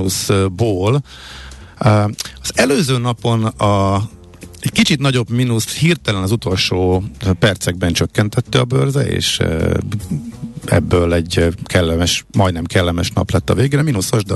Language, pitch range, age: Hungarian, 85-110 Hz, 50-69